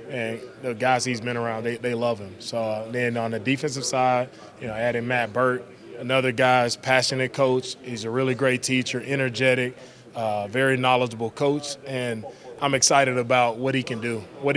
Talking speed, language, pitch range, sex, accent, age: 180 wpm, English, 120-135 Hz, male, American, 20-39